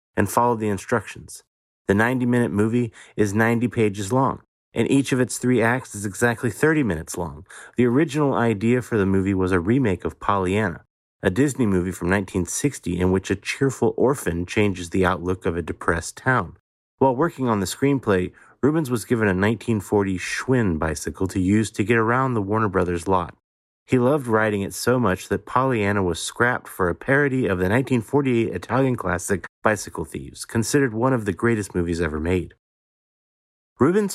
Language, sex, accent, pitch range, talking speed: English, male, American, 90-125 Hz, 175 wpm